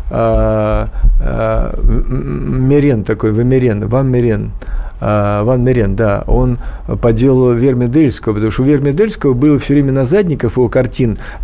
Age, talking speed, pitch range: 50-69, 140 wpm, 110-140 Hz